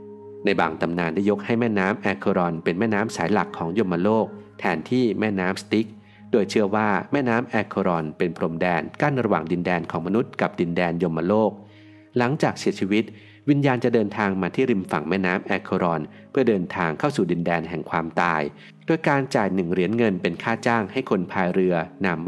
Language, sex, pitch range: Thai, male, 90-120 Hz